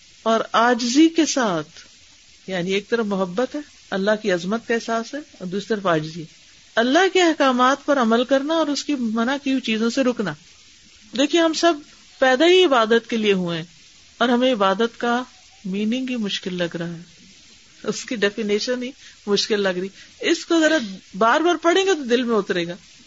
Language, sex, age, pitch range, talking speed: Urdu, female, 50-69, 210-280 Hz, 185 wpm